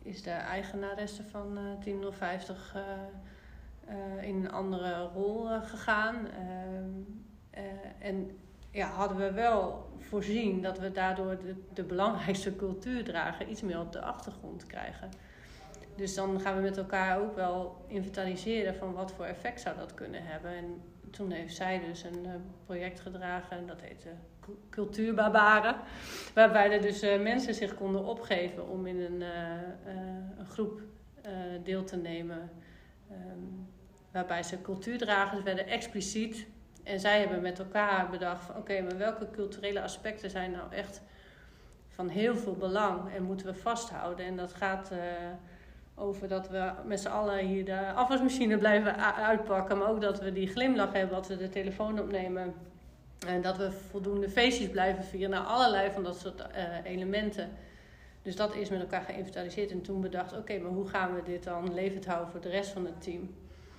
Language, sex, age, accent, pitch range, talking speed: Dutch, female, 40-59, Dutch, 180-205 Hz, 170 wpm